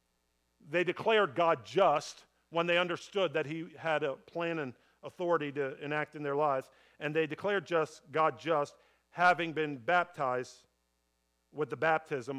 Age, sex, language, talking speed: 50-69, male, English, 150 wpm